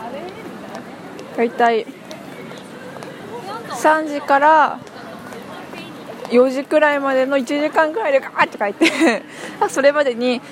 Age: 20-39